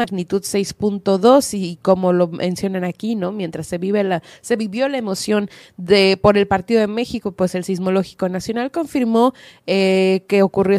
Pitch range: 180-220 Hz